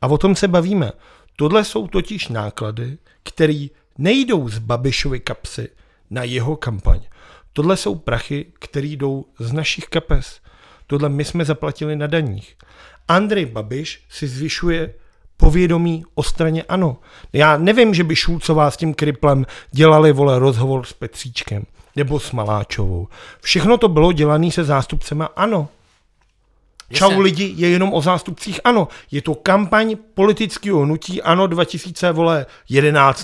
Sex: male